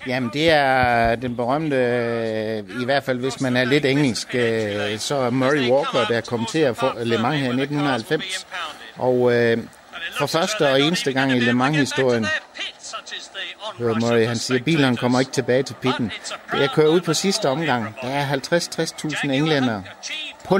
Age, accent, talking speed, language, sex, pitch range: 60-79, native, 165 wpm, Danish, male, 115-140 Hz